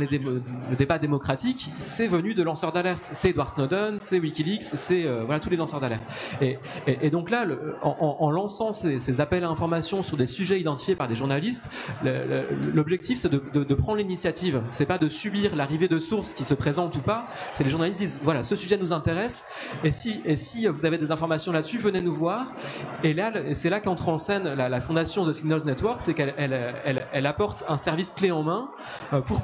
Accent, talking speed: French, 205 wpm